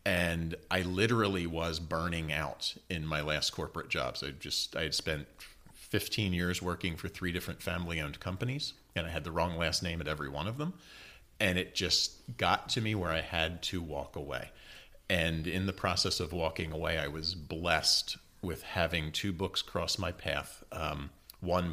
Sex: male